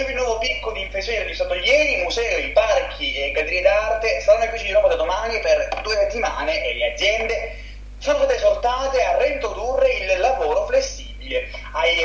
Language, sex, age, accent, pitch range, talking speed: Italian, male, 30-49, native, 225-310 Hz, 180 wpm